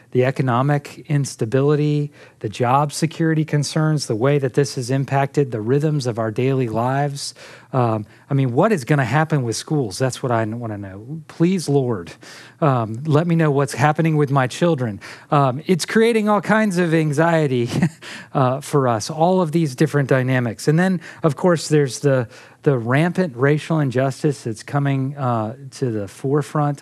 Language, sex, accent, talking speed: English, male, American, 170 wpm